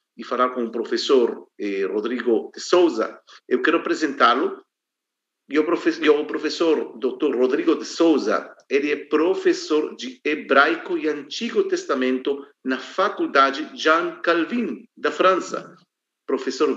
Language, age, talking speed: Portuguese, 50-69, 125 wpm